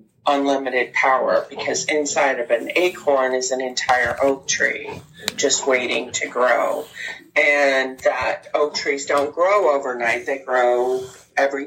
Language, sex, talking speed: English, female, 135 wpm